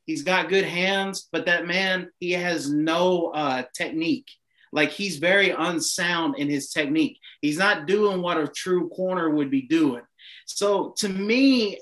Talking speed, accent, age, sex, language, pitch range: 155 wpm, American, 30-49, male, English, 170-215 Hz